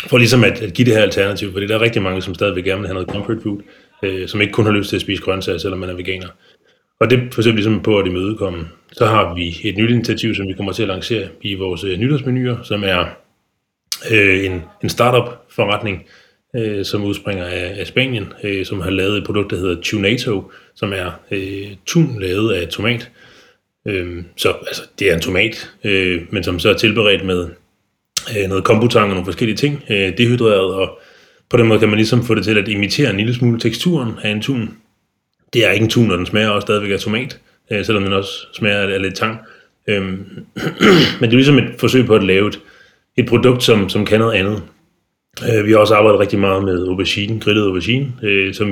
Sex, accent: male, native